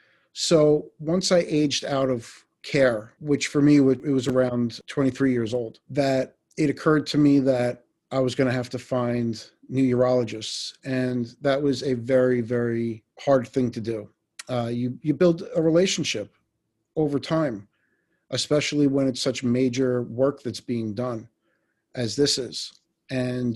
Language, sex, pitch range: English, male, 120-140 Hz